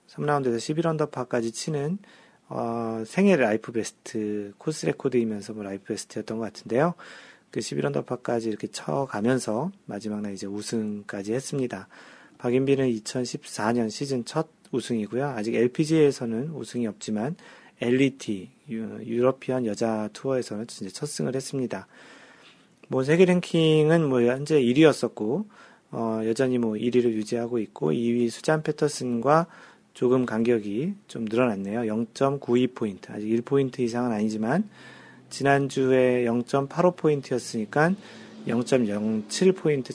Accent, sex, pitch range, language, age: native, male, 110-150 Hz, Korean, 40-59